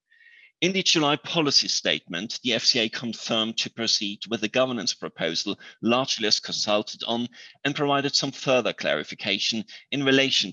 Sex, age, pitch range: male, 30-49, 105-135 Hz